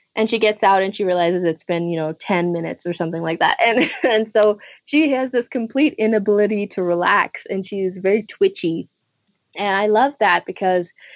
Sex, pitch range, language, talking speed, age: female, 185-220 Hz, English, 200 wpm, 20-39